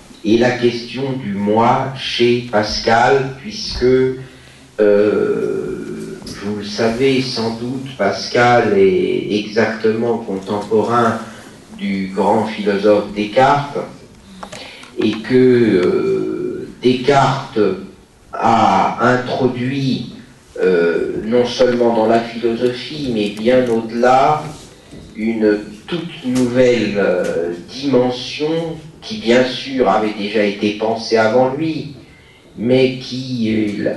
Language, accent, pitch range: French, French, 105-130 Hz